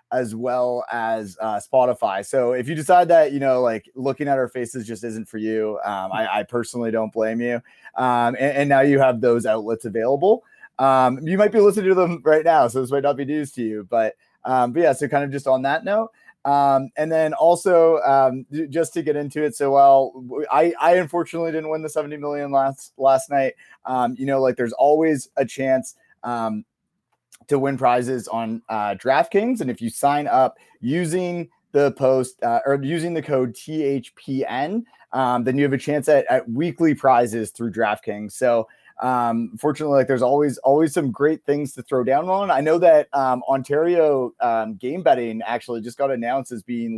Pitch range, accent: 120-150 Hz, American